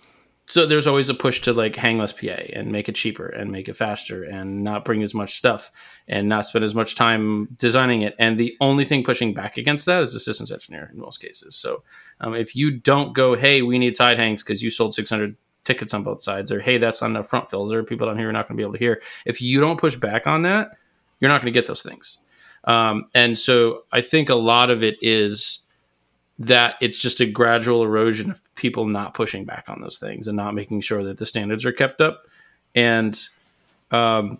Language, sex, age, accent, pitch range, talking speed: English, male, 20-39, American, 105-125 Hz, 235 wpm